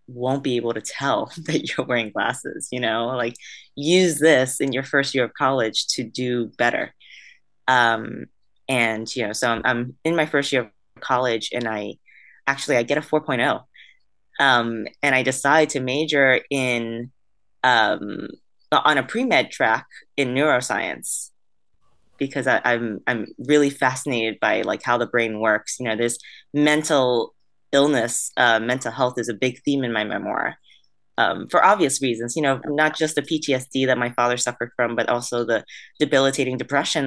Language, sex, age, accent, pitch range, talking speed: English, female, 20-39, American, 115-140 Hz, 170 wpm